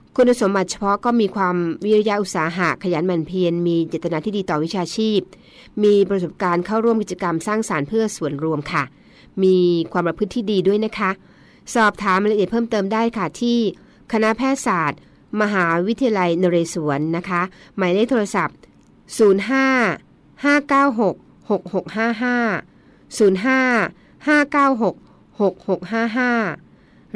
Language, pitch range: Thai, 175-220 Hz